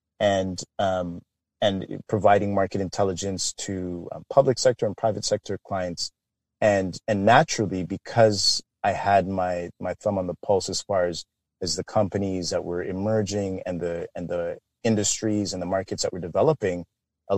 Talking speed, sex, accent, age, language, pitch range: 160 wpm, male, American, 30-49, English, 90-110 Hz